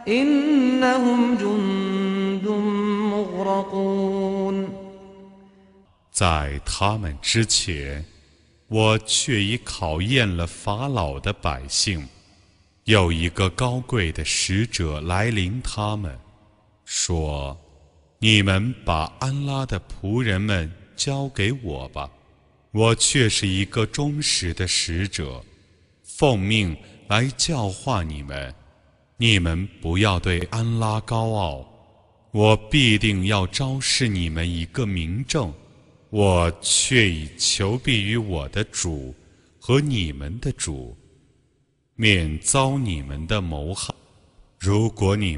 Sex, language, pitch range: male, Chinese, 85-120 Hz